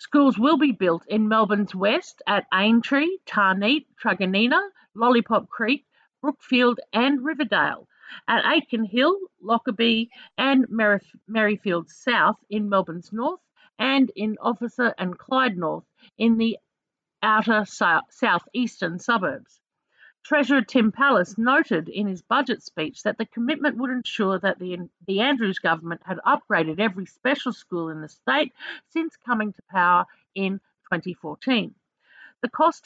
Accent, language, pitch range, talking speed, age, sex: Australian, English, 200-260 Hz, 135 wpm, 50-69, female